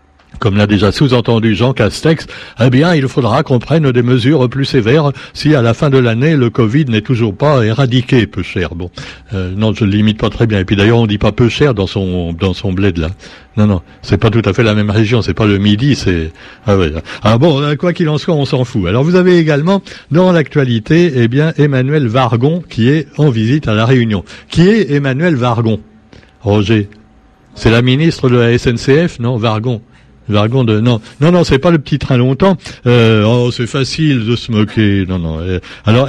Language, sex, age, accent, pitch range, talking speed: French, male, 60-79, French, 110-145 Hz, 220 wpm